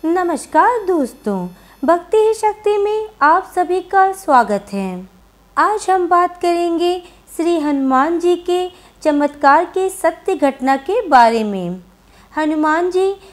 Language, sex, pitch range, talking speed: Hindi, female, 265-345 Hz, 125 wpm